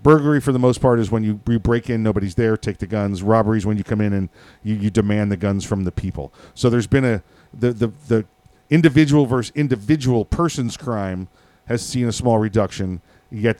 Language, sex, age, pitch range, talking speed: English, male, 40-59, 105-130 Hz, 210 wpm